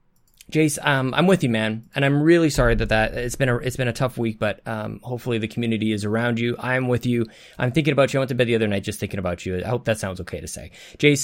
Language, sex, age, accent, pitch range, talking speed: English, male, 20-39, American, 120-160 Hz, 295 wpm